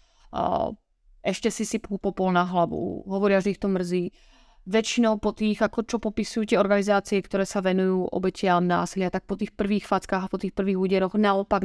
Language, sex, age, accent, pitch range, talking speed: Czech, female, 30-49, native, 185-225 Hz, 185 wpm